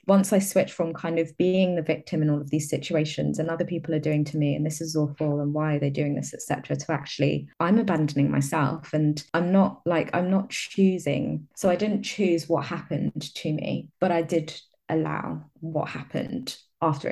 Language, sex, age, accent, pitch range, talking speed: English, female, 20-39, British, 150-180 Hz, 205 wpm